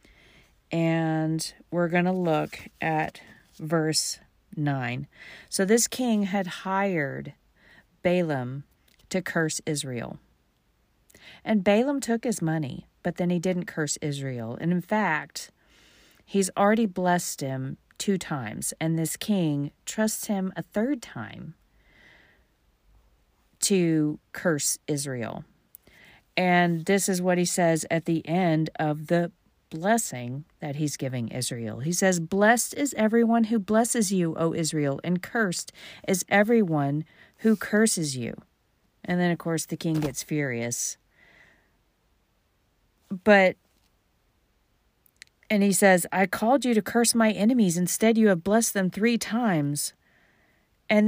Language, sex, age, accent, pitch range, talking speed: English, female, 40-59, American, 160-215 Hz, 130 wpm